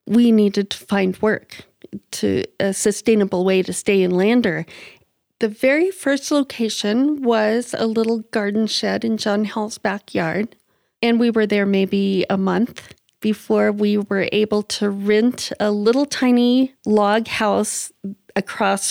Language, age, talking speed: English, 40-59, 145 wpm